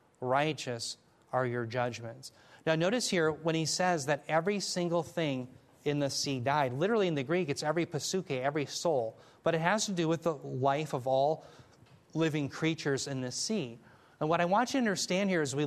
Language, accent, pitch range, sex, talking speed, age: English, American, 130-165 Hz, male, 200 wpm, 30-49